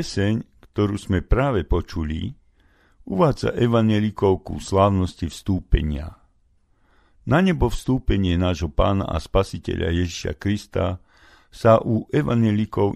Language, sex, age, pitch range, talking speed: Slovak, male, 50-69, 85-110 Hz, 95 wpm